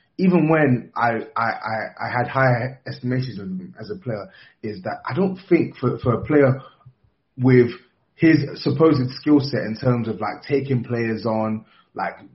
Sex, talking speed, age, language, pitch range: male, 170 wpm, 20-39, English, 125-155 Hz